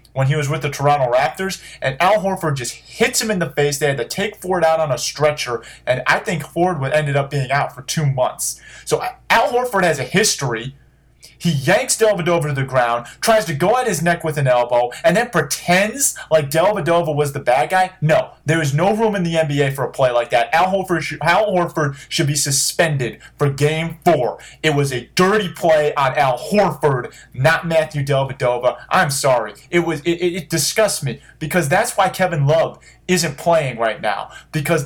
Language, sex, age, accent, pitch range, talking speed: English, male, 30-49, American, 140-180 Hz, 210 wpm